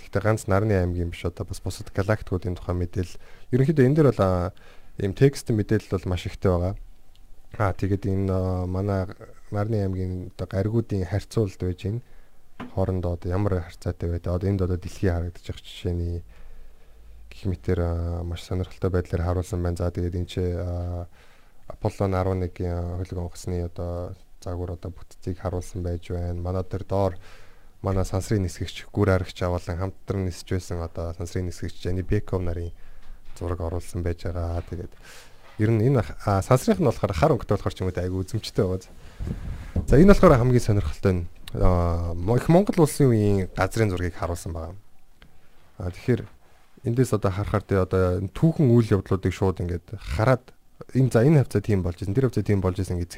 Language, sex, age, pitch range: Korean, male, 20-39, 90-105 Hz